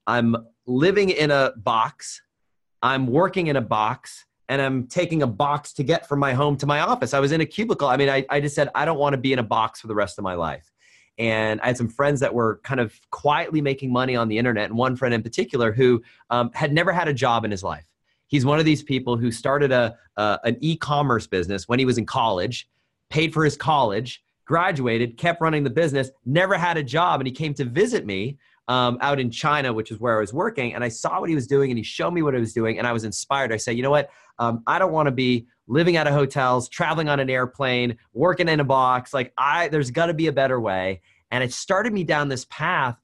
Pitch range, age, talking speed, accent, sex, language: 115-145 Hz, 30-49, 250 wpm, American, male, English